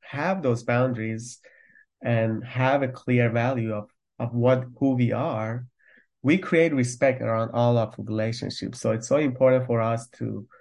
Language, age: English, 30-49